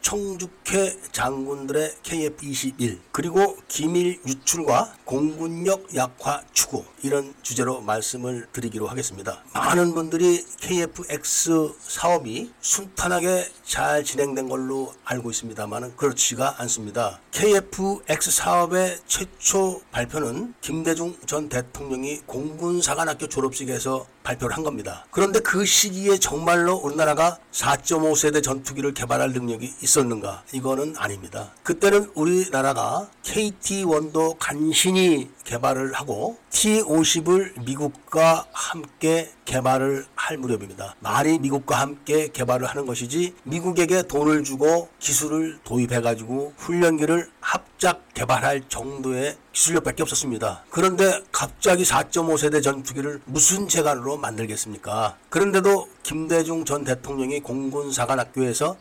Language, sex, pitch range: Korean, male, 130-170 Hz